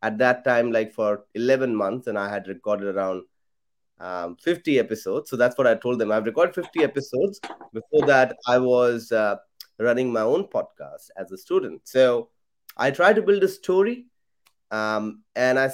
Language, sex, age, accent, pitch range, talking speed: English, male, 30-49, Indian, 115-155 Hz, 180 wpm